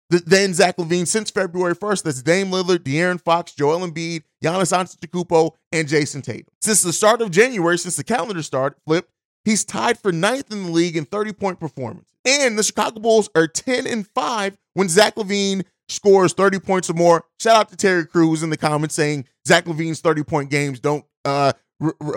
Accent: American